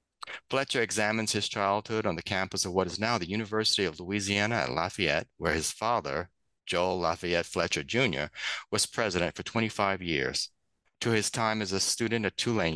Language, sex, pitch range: English, male, 90-110 Hz